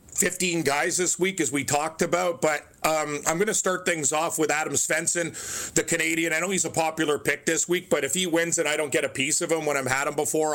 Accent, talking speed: American, 255 wpm